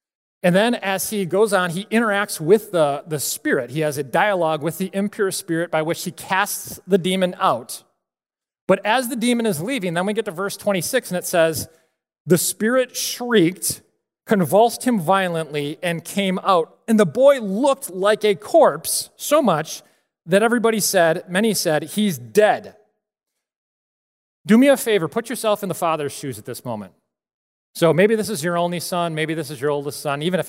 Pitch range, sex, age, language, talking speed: 155-210 Hz, male, 30-49, English, 185 wpm